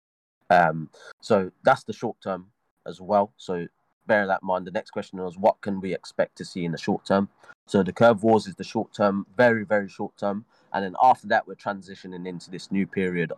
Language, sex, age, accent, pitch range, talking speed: English, male, 20-39, British, 90-105 Hz, 220 wpm